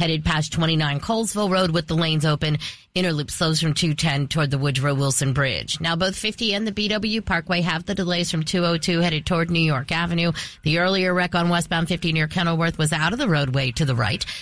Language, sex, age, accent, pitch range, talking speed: English, female, 40-59, American, 155-215 Hz, 210 wpm